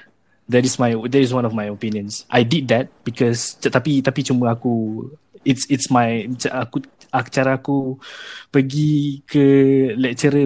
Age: 20-39